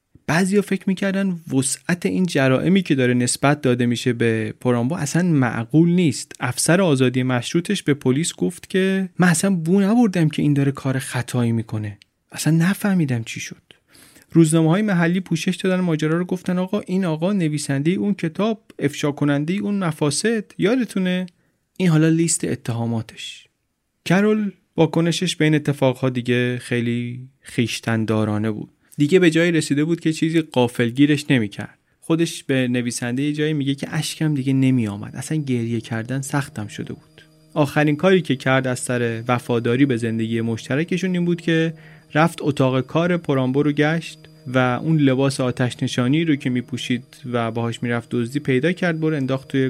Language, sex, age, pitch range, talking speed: Persian, male, 30-49, 125-165 Hz, 155 wpm